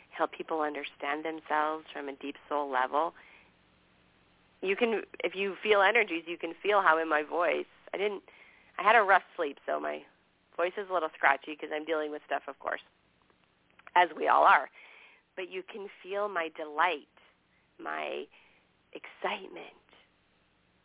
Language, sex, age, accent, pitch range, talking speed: English, female, 40-59, American, 145-215 Hz, 160 wpm